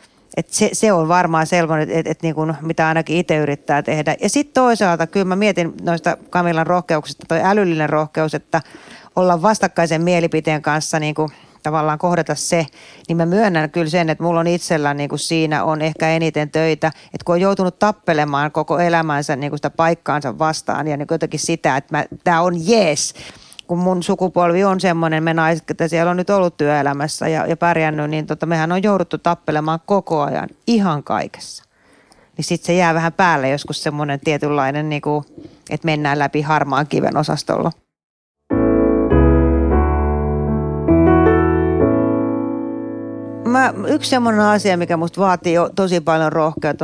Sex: female